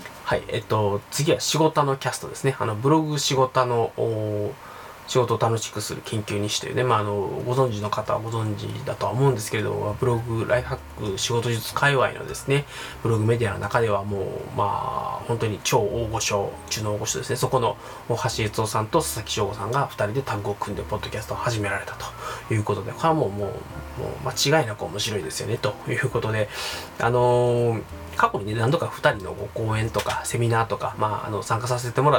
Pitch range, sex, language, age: 105-140 Hz, male, Japanese, 20-39